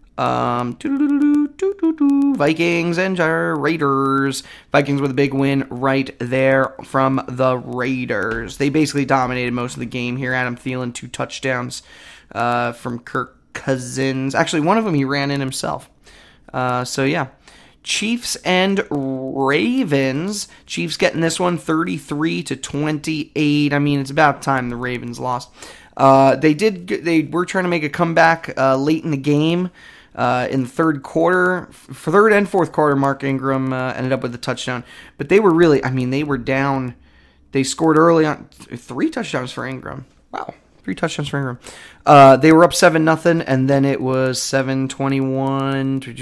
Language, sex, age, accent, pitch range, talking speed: English, male, 20-39, American, 130-160 Hz, 160 wpm